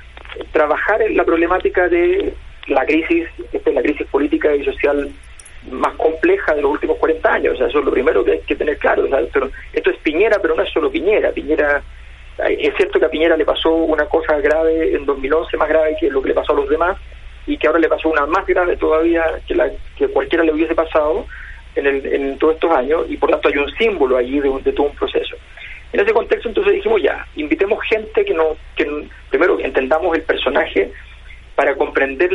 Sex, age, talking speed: male, 40-59, 220 wpm